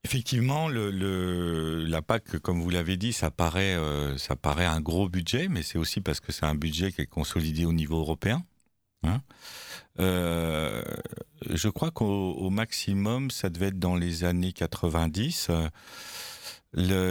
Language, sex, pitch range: French, male, 85-110 Hz